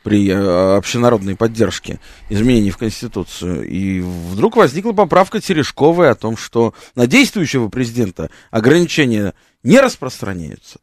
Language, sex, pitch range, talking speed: Russian, male, 110-165 Hz, 110 wpm